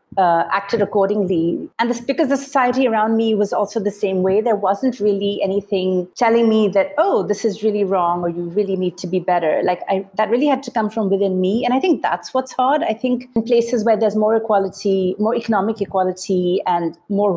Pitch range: 185-230 Hz